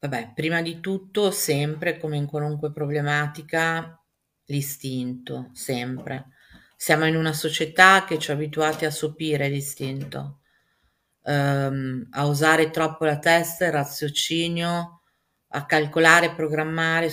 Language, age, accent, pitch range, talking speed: Italian, 40-59, native, 150-165 Hz, 110 wpm